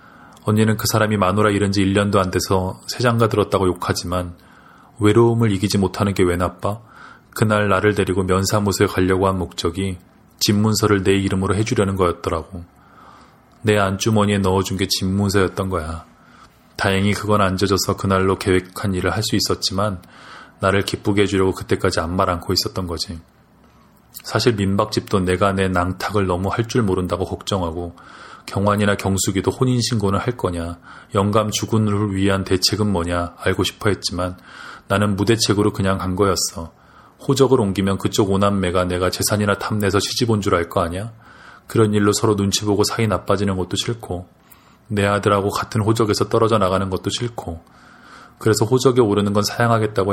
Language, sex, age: Korean, male, 20-39